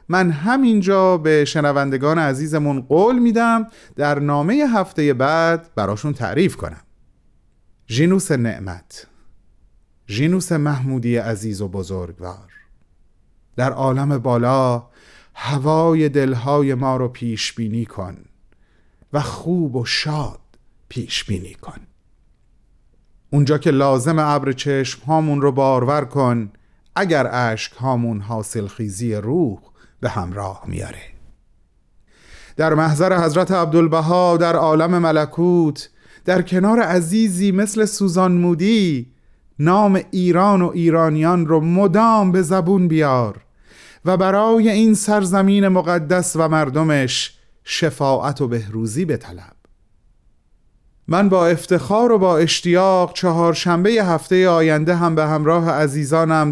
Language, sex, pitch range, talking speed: Persian, male, 125-180 Hz, 105 wpm